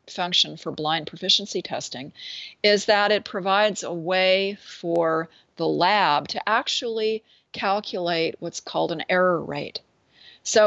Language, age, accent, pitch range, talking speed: English, 40-59, American, 170-215 Hz, 130 wpm